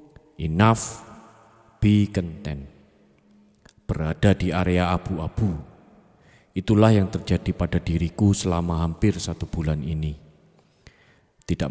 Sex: male